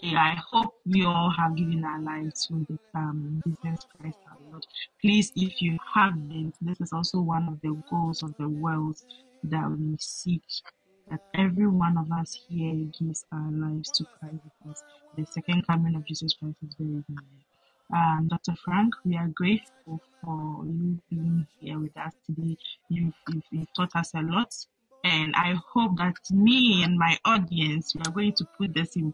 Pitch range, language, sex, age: 160-185 Hz, Japanese, female, 20-39